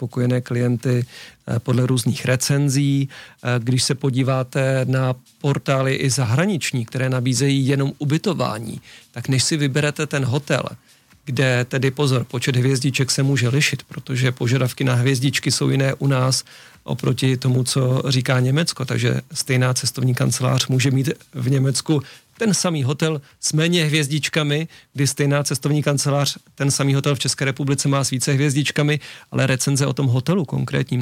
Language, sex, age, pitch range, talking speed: Czech, male, 40-59, 130-140 Hz, 150 wpm